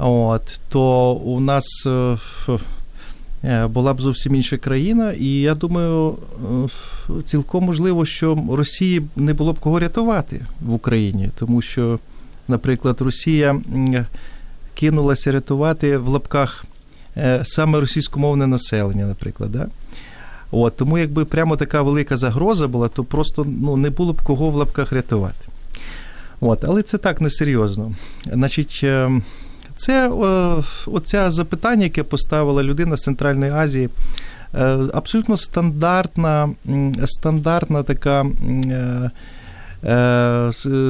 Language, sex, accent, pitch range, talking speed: Ukrainian, male, native, 120-155 Hz, 115 wpm